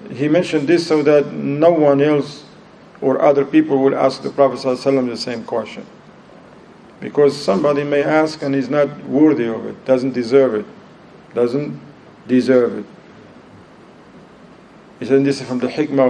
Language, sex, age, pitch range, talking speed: English, male, 50-69, 130-170 Hz, 155 wpm